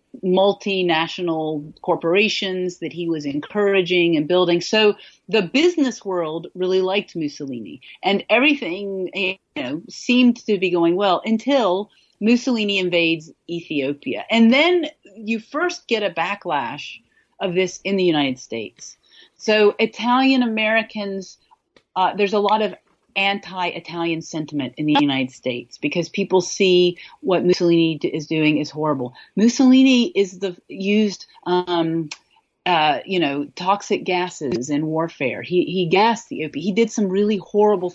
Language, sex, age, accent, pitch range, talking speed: English, female, 40-59, American, 165-215 Hz, 130 wpm